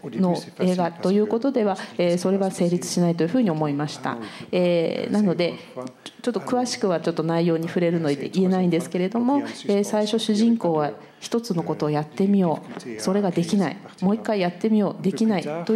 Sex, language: female, Japanese